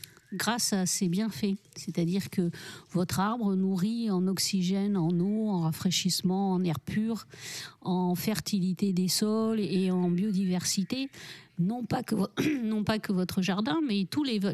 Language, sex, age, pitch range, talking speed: French, female, 50-69, 170-205 Hz, 150 wpm